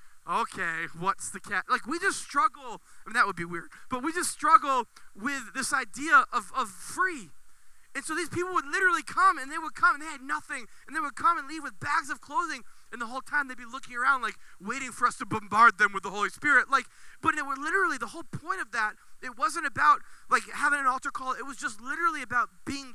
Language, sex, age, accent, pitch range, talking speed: English, male, 20-39, American, 195-285 Hz, 245 wpm